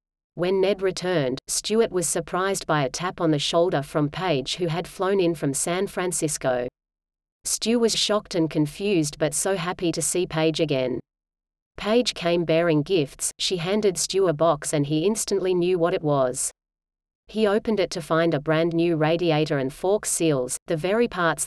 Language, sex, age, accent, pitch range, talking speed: English, female, 30-49, Australian, 150-180 Hz, 180 wpm